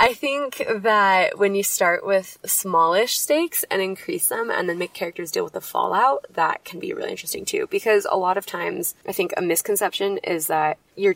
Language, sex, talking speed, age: English, female, 205 wpm, 20-39